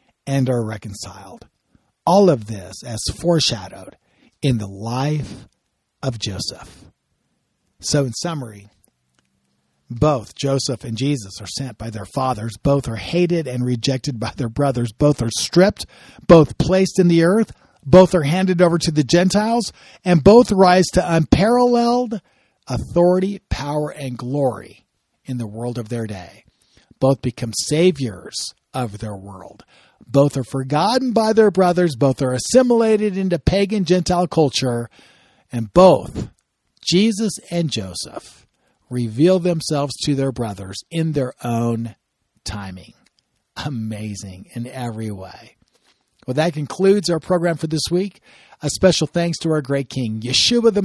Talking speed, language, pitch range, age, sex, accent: 140 wpm, English, 120-180 Hz, 50-69, male, American